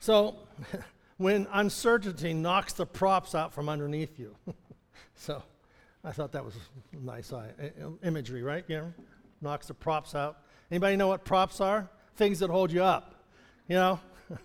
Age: 60-79